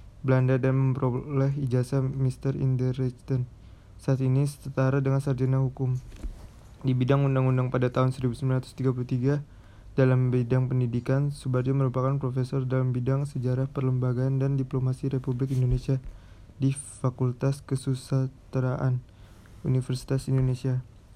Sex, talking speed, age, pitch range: male, 110 wpm, 20-39, 125-135 Hz